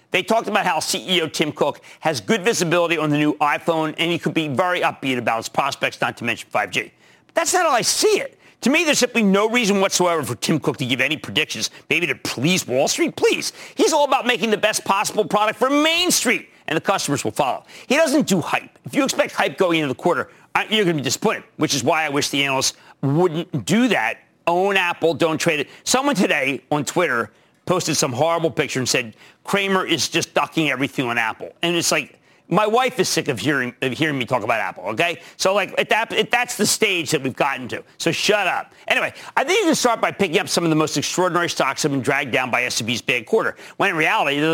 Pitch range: 150-215 Hz